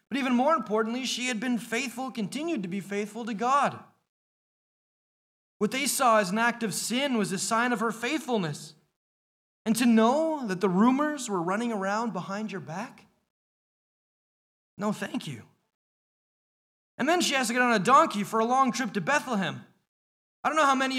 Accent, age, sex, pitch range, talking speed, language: American, 30-49, male, 205-255 Hz, 180 wpm, English